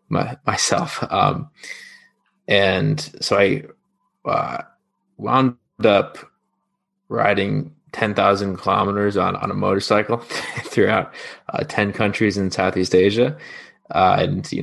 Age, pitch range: 20-39, 100-155 Hz